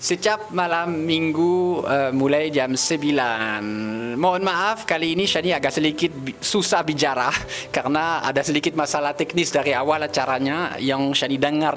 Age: 20-39